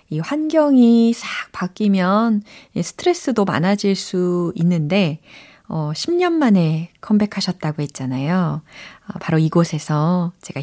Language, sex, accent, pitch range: Korean, female, native, 160-235 Hz